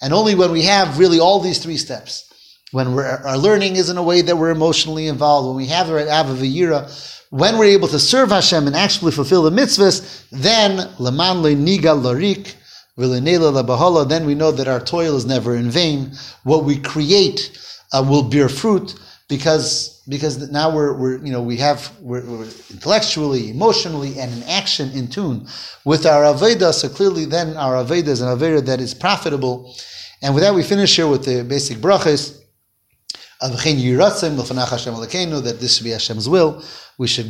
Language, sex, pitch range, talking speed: English, male, 130-180 Hz, 175 wpm